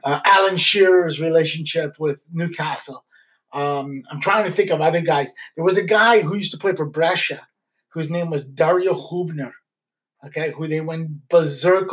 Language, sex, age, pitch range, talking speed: English, male, 30-49, 155-185 Hz, 170 wpm